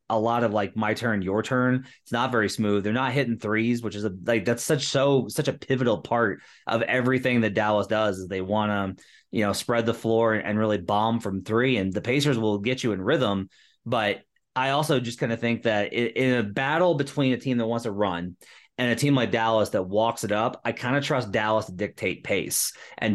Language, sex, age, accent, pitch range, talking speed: English, male, 20-39, American, 105-130 Hz, 240 wpm